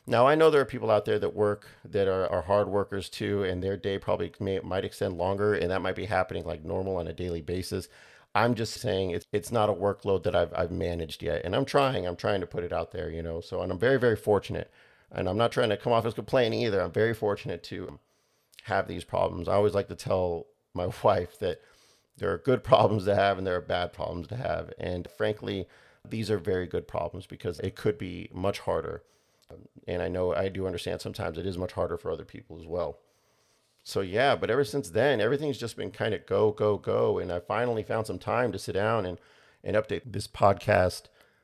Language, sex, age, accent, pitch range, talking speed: English, male, 40-59, American, 90-105 Hz, 235 wpm